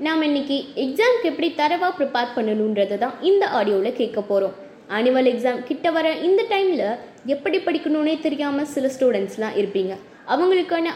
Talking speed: 130 wpm